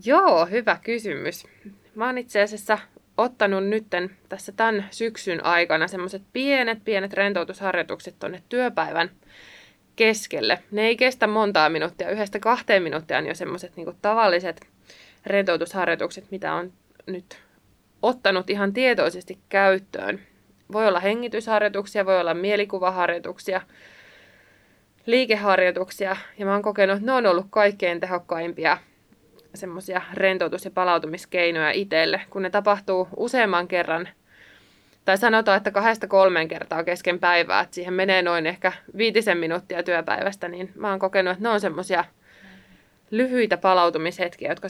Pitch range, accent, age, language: 175-210 Hz, native, 20-39, Finnish